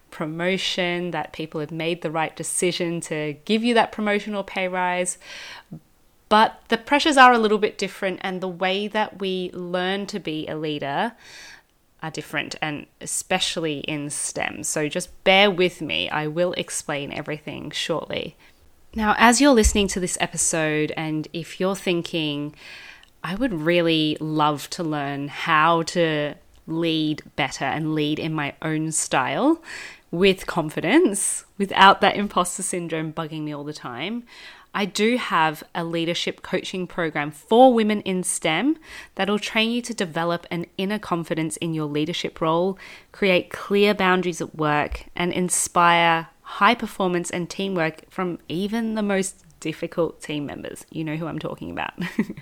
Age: 20-39